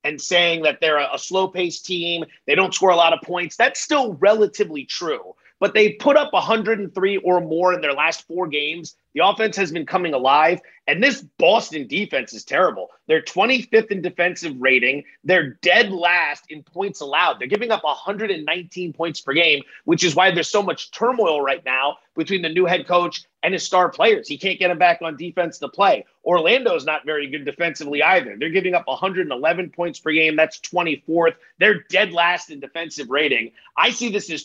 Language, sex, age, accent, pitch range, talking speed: English, male, 30-49, American, 160-205 Hz, 195 wpm